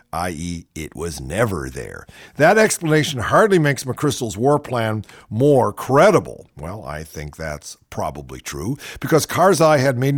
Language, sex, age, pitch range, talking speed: English, male, 50-69, 100-165 Hz, 140 wpm